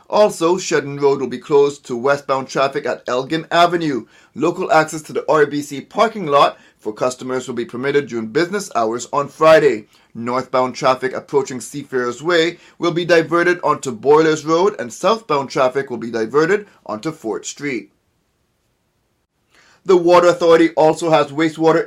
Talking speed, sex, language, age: 150 wpm, male, English, 30-49